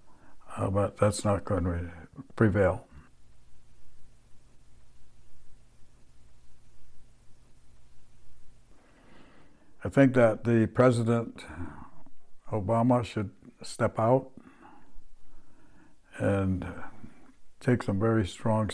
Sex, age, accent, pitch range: male, 60-79, American, 95-115 Hz